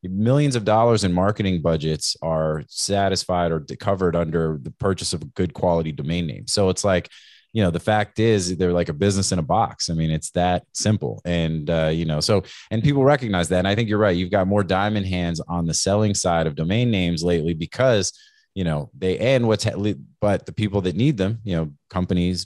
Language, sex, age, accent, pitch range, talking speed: English, male, 30-49, American, 85-105 Hz, 215 wpm